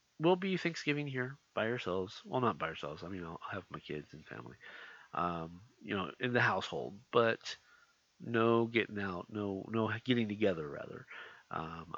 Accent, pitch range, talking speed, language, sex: American, 100-135 Hz, 170 wpm, English, male